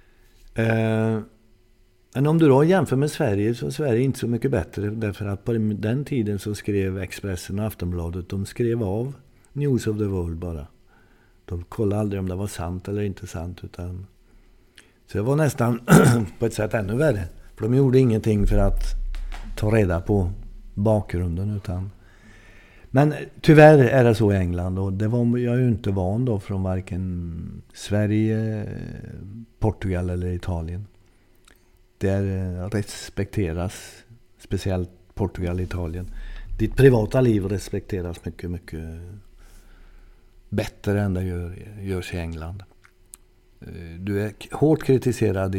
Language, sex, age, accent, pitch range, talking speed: Swedish, male, 50-69, native, 90-110 Hz, 140 wpm